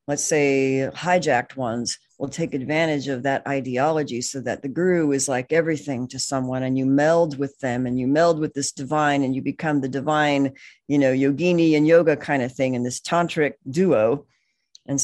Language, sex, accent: English, female, American